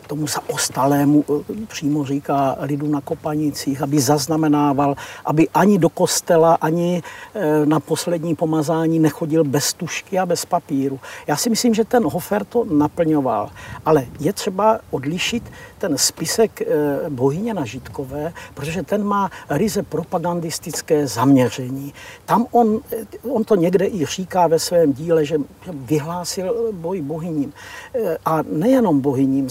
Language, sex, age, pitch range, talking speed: Czech, male, 60-79, 150-225 Hz, 130 wpm